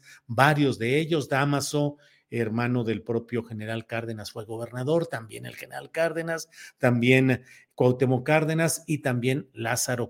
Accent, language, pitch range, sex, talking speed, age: Mexican, Spanish, 120-155 Hz, male, 125 wpm, 50-69